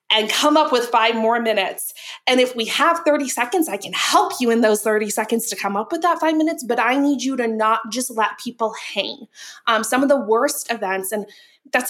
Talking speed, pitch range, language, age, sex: 230 wpm, 215-265 Hz, English, 20-39, female